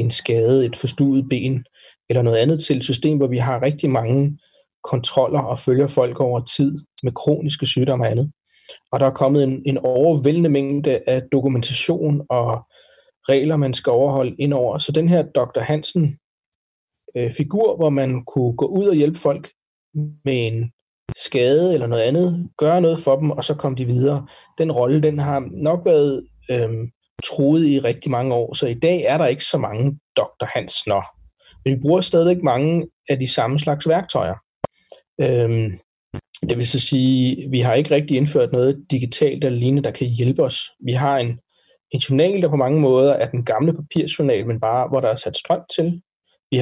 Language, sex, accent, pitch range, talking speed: Danish, male, native, 125-150 Hz, 185 wpm